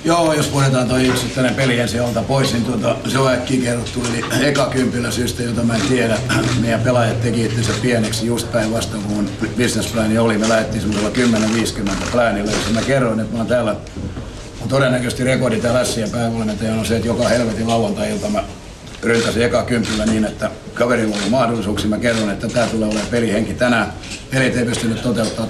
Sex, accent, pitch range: male, native, 110-130 Hz